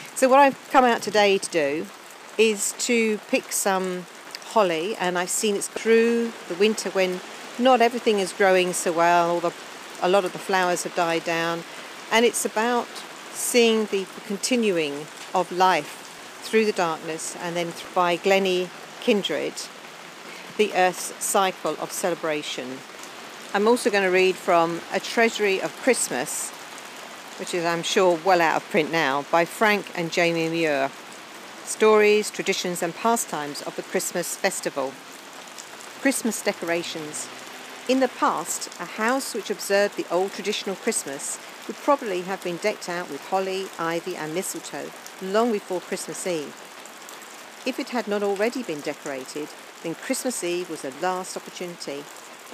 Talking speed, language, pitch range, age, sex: 150 wpm, English, 175-215 Hz, 50-69, female